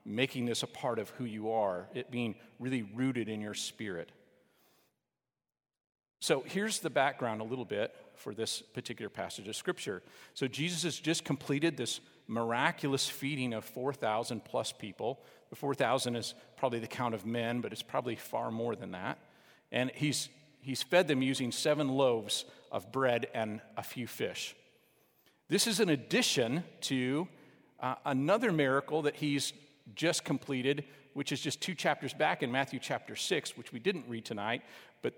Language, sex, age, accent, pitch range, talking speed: English, male, 50-69, American, 125-160 Hz, 165 wpm